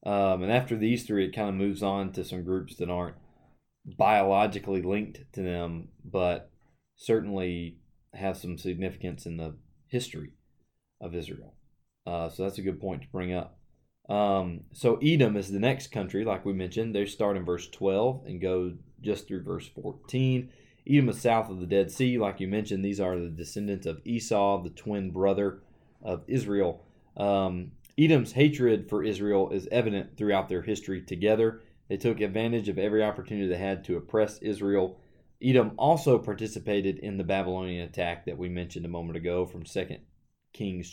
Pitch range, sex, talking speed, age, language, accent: 90-115 Hz, male, 175 wpm, 20-39, English, American